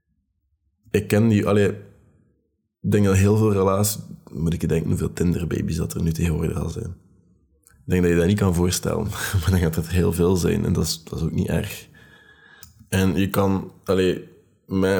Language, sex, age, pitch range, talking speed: Dutch, male, 20-39, 85-100 Hz, 195 wpm